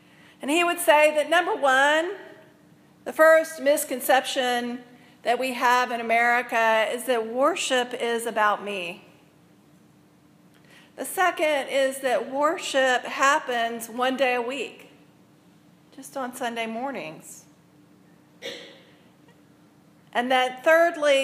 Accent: American